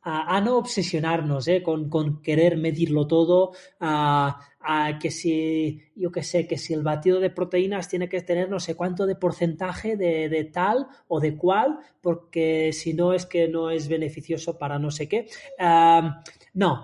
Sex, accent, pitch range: male, Spanish, 160-205 Hz